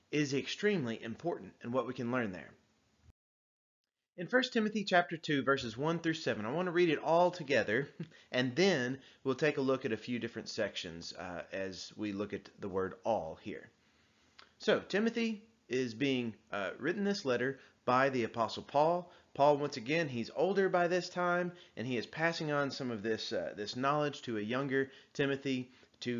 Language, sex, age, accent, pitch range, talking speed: English, male, 30-49, American, 120-175 Hz, 185 wpm